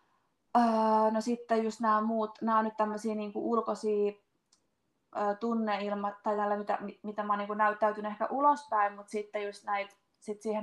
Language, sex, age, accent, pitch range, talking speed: Finnish, female, 20-39, native, 210-240 Hz, 150 wpm